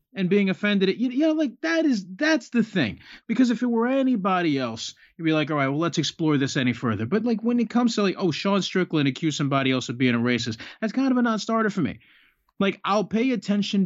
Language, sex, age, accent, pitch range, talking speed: English, male, 30-49, American, 125-180 Hz, 250 wpm